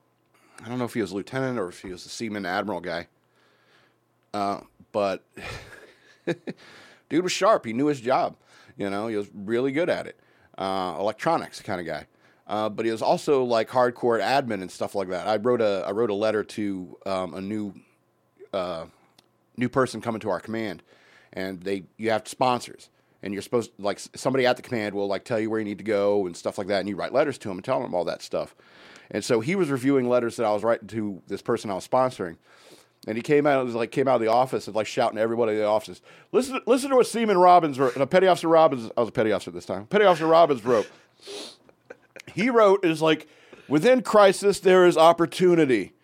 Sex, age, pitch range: male, 40-59, 105-160 Hz